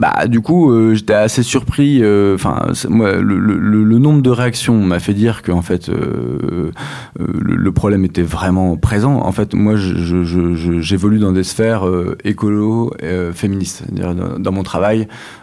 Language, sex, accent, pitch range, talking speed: French, male, French, 90-115 Hz, 185 wpm